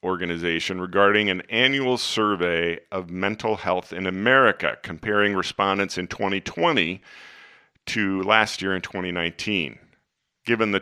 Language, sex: English, male